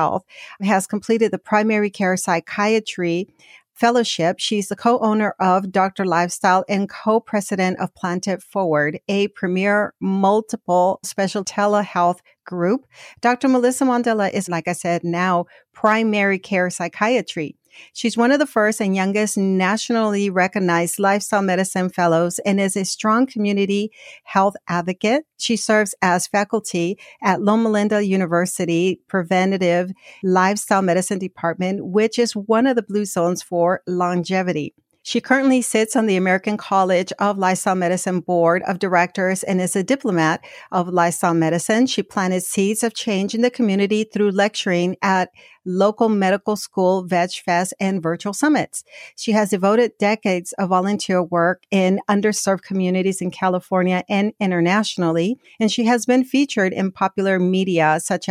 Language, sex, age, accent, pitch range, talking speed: English, female, 50-69, American, 180-210 Hz, 140 wpm